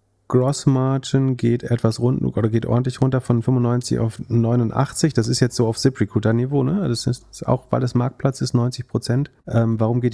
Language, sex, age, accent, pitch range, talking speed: German, male, 30-49, German, 110-130 Hz, 170 wpm